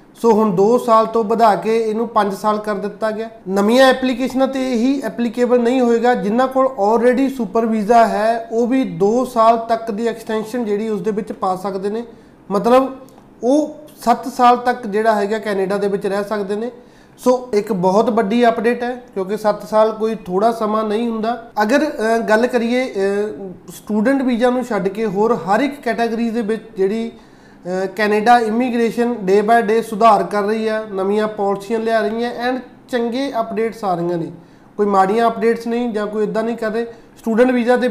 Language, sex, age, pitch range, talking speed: Punjabi, male, 30-49, 210-235 Hz, 160 wpm